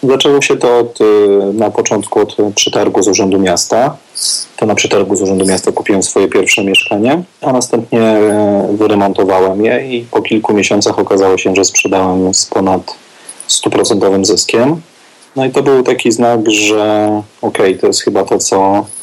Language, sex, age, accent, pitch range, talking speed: Polish, male, 30-49, native, 95-115 Hz, 160 wpm